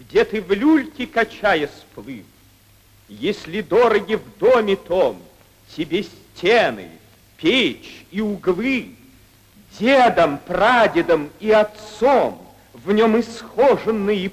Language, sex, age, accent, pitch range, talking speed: Russian, male, 50-69, native, 170-260 Hz, 95 wpm